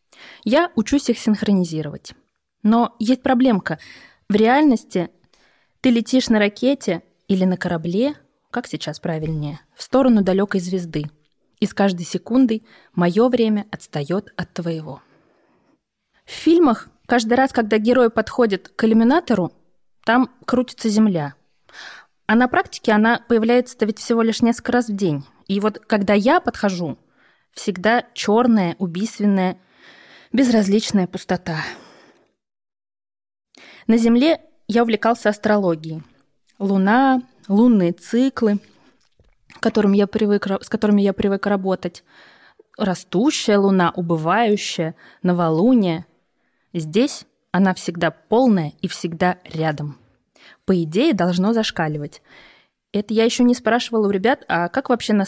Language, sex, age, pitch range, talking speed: Russian, female, 20-39, 180-235 Hz, 115 wpm